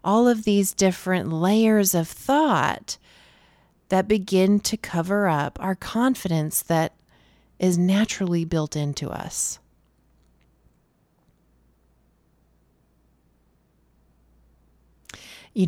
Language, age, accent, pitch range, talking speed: English, 30-49, American, 165-215 Hz, 80 wpm